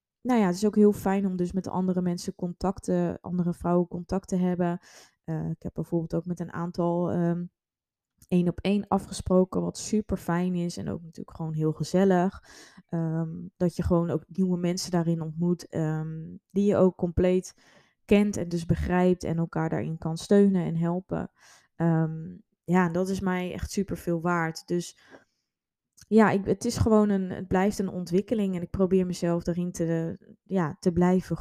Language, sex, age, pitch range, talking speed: Dutch, female, 20-39, 165-185 Hz, 175 wpm